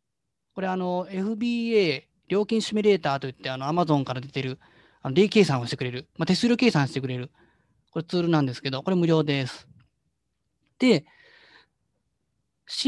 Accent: native